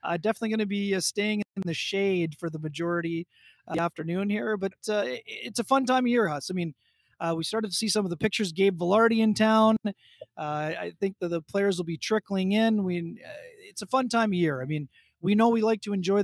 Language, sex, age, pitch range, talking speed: English, male, 30-49, 165-200 Hz, 250 wpm